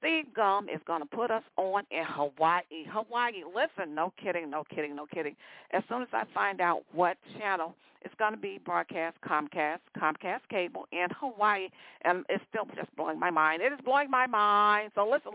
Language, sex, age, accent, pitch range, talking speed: English, female, 50-69, American, 170-225 Hz, 190 wpm